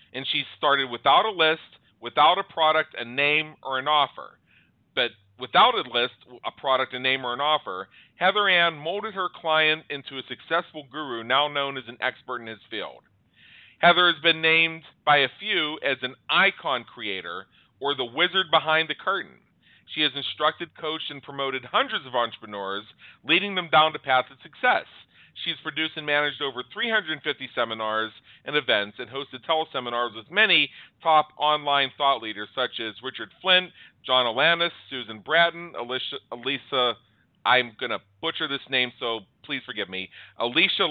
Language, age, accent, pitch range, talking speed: English, 40-59, American, 125-160 Hz, 165 wpm